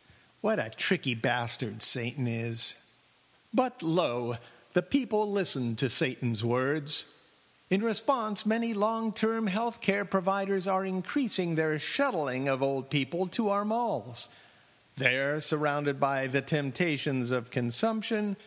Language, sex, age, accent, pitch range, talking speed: English, male, 50-69, American, 140-205 Hz, 125 wpm